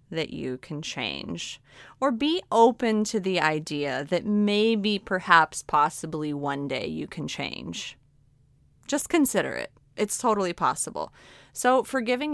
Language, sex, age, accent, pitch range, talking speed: English, female, 30-49, American, 150-200 Hz, 130 wpm